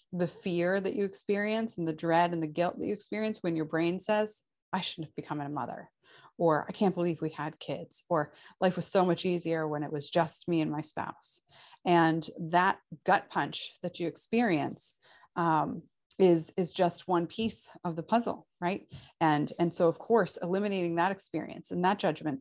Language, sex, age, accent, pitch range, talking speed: English, female, 30-49, American, 160-195 Hz, 195 wpm